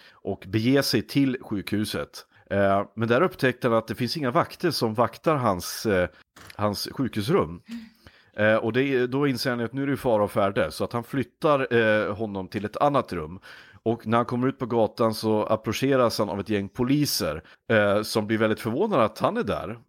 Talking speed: 205 wpm